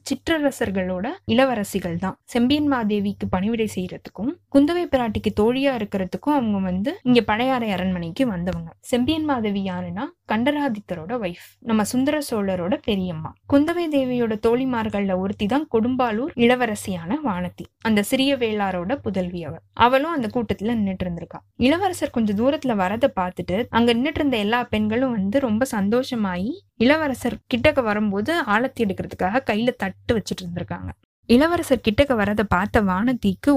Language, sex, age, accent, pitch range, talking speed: Tamil, female, 20-39, native, 195-260 Hz, 120 wpm